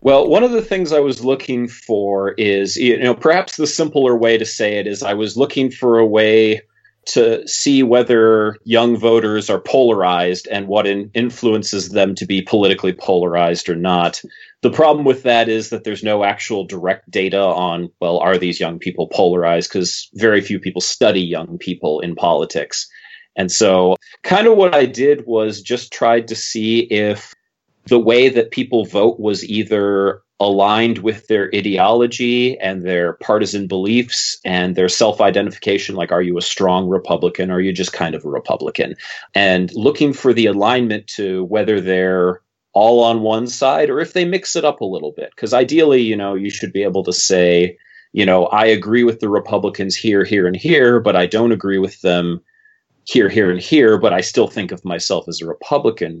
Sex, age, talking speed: male, 30-49, 190 wpm